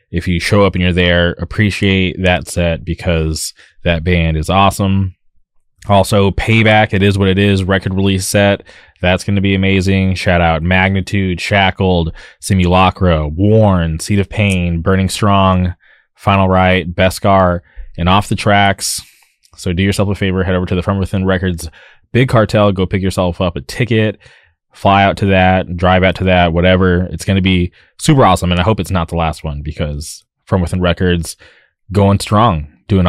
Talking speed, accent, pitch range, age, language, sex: 180 wpm, American, 85-100 Hz, 20-39, English, male